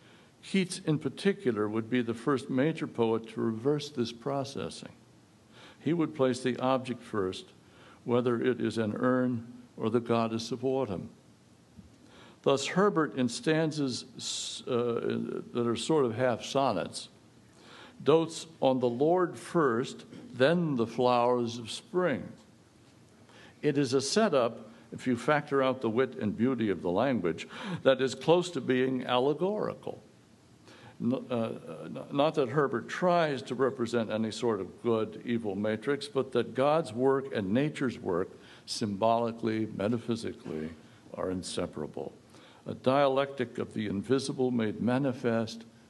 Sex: male